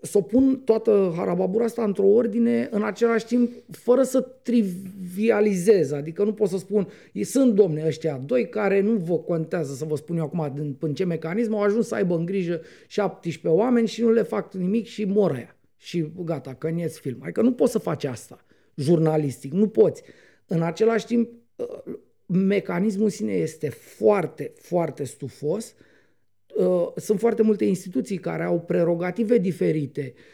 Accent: native